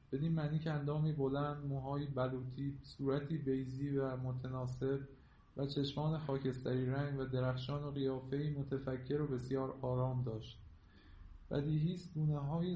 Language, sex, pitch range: Persian, male, 130-155 Hz